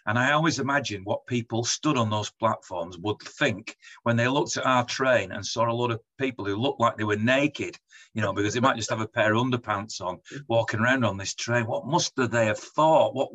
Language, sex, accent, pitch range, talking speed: English, male, British, 105-130 Hz, 240 wpm